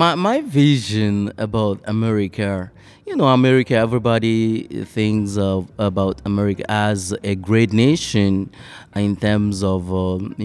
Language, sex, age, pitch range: English, male, 20-39, 100-130 Hz